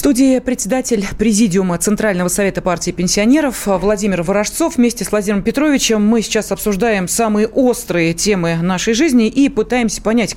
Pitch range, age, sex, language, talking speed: 195-245 Hz, 30-49, female, Russian, 145 wpm